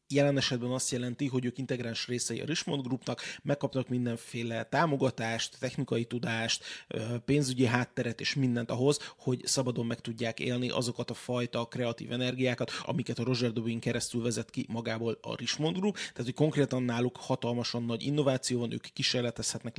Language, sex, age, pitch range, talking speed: Hungarian, male, 30-49, 115-135 Hz, 160 wpm